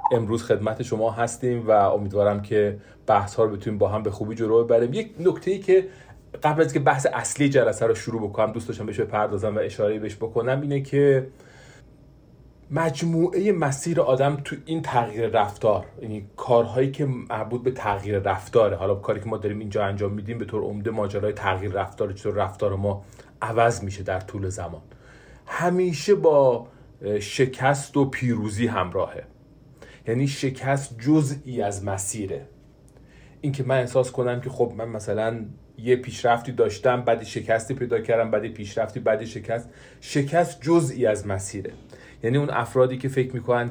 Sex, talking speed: male, 165 wpm